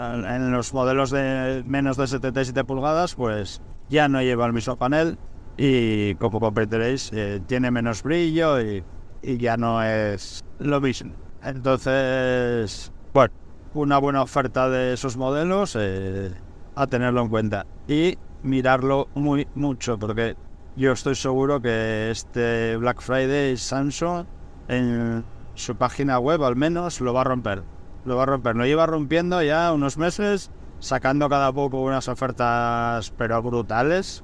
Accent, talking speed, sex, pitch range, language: Spanish, 145 wpm, male, 115-140 Hz, Spanish